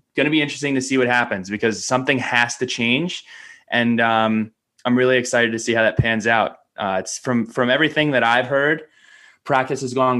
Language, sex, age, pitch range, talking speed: English, male, 20-39, 115-140 Hz, 205 wpm